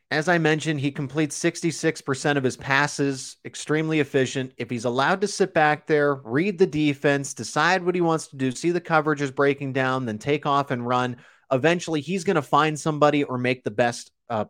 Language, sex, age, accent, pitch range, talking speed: English, male, 30-49, American, 120-150 Hz, 205 wpm